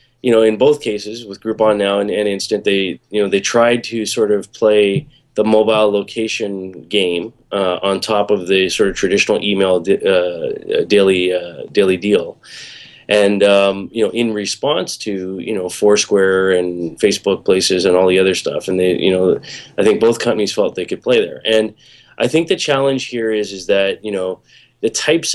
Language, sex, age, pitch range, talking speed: English, male, 20-39, 95-120 Hz, 195 wpm